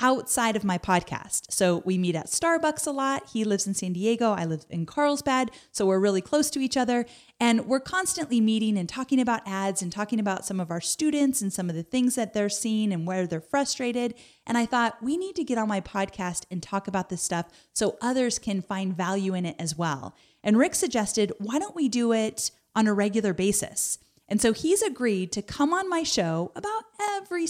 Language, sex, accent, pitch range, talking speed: English, female, American, 190-265 Hz, 220 wpm